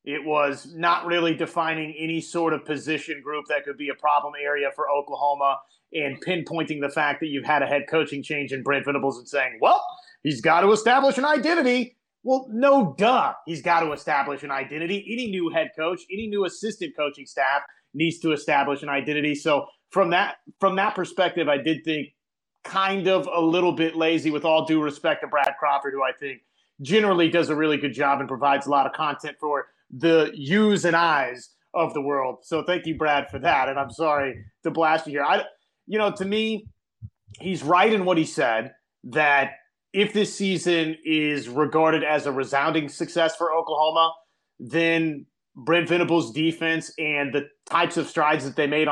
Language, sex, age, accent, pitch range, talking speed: English, male, 30-49, American, 145-175 Hz, 195 wpm